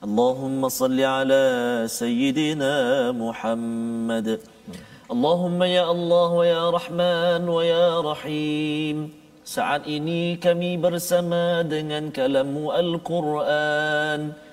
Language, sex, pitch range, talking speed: Malayalam, male, 135-170 Hz, 85 wpm